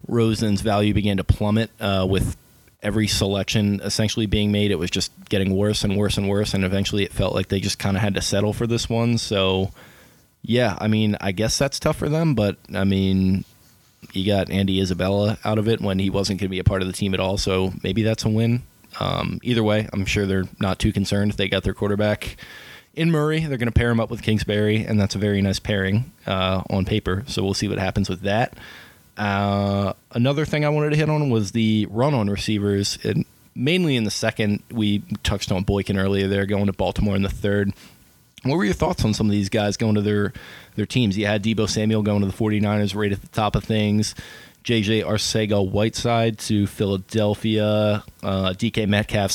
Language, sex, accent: English, male, American